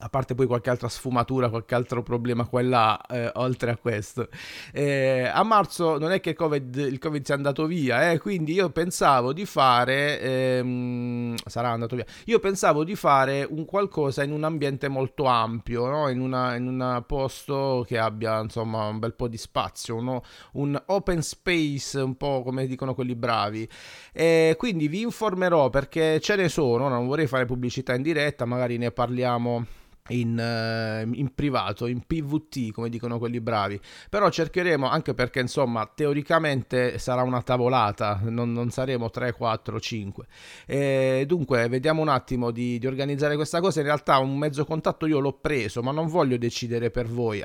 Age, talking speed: 30-49, 170 wpm